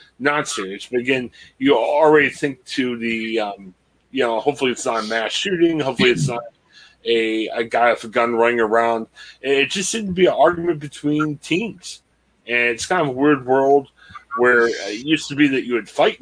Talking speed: 200 wpm